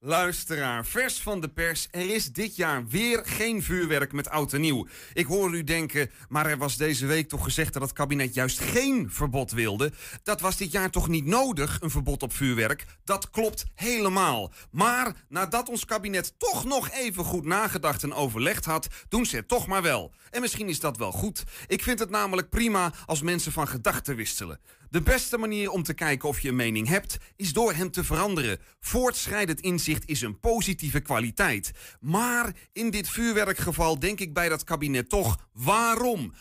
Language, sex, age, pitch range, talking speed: Dutch, male, 40-59, 145-205 Hz, 190 wpm